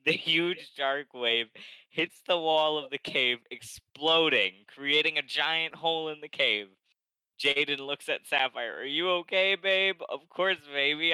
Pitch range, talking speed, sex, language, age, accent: 115-150 Hz, 155 wpm, male, English, 20-39, American